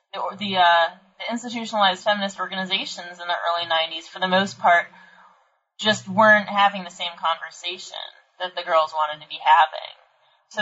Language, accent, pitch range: English, American, 170-225 Hz